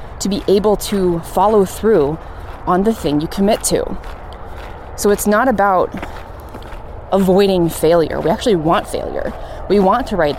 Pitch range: 160-205 Hz